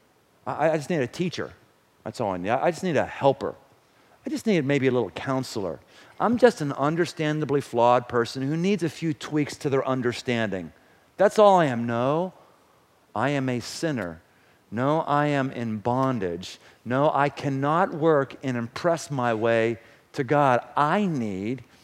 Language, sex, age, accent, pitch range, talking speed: English, male, 50-69, American, 125-190 Hz, 170 wpm